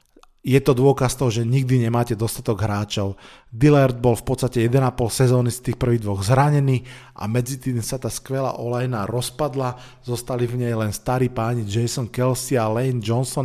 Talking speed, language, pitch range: 175 wpm, Slovak, 120-135 Hz